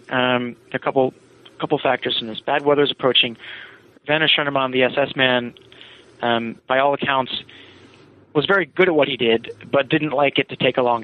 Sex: male